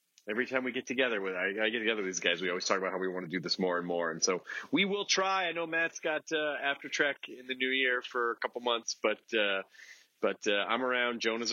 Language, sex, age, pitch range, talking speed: English, male, 30-49, 95-130 Hz, 275 wpm